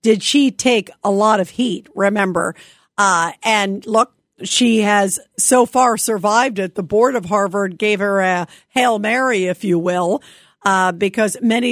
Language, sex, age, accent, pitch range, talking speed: English, female, 50-69, American, 205-275 Hz, 165 wpm